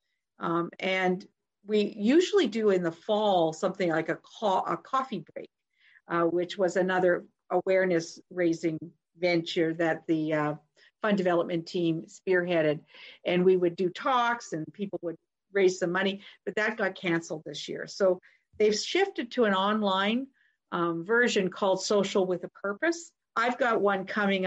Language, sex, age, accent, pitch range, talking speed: English, female, 50-69, American, 170-215 Hz, 150 wpm